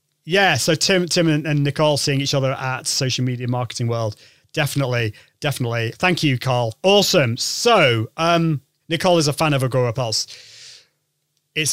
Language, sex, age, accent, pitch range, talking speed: English, male, 30-49, British, 135-175 Hz, 155 wpm